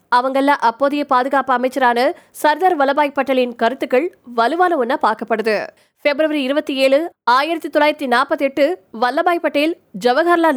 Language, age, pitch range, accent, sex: Tamil, 20-39, 250-305 Hz, native, female